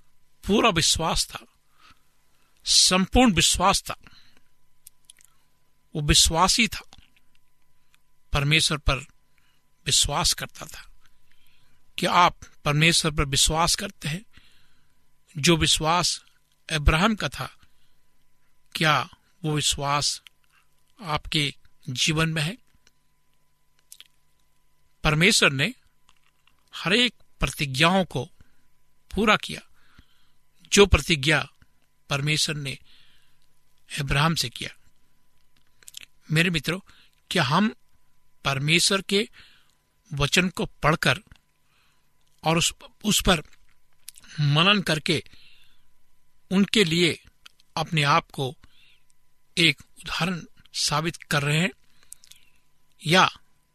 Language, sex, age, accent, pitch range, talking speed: Hindi, male, 60-79, native, 145-185 Hz, 85 wpm